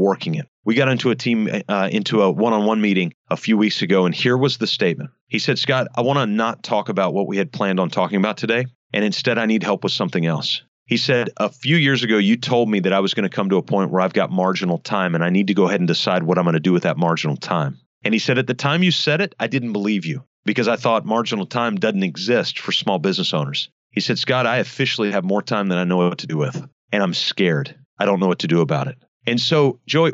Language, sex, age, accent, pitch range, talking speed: English, male, 40-59, American, 95-130 Hz, 275 wpm